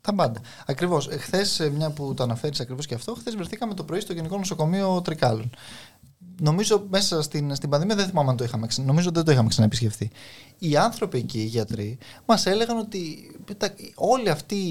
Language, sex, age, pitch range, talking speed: Greek, male, 20-39, 130-210 Hz, 175 wpm